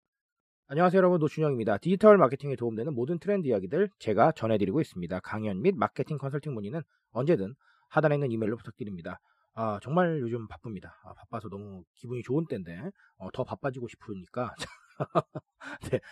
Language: Korean